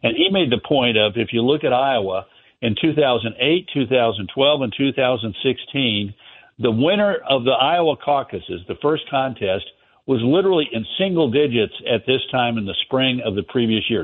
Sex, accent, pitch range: male, American, 115-140 Hz